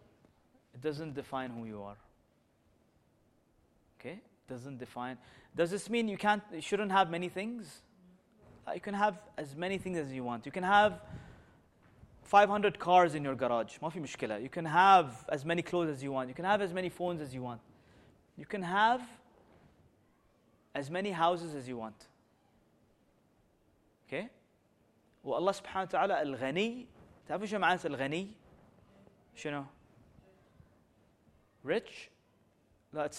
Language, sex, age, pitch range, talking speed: English, male, 30-49, 120-195 Hz, 130 wpm